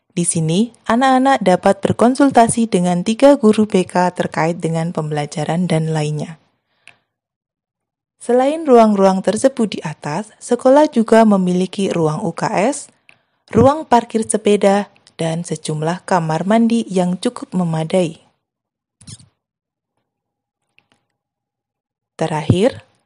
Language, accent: Indonesian, native